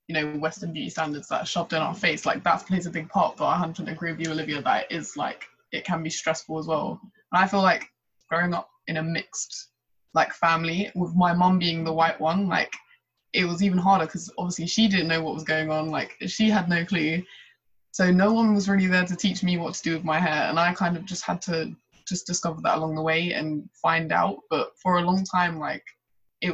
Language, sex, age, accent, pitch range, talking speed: English, female, 20-39, British, 160-190 Hz, 245 wpm